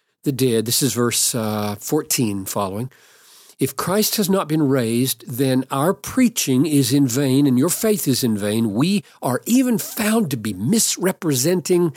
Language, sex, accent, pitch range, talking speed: English, male, American, 120-195 Hz, 165 wpm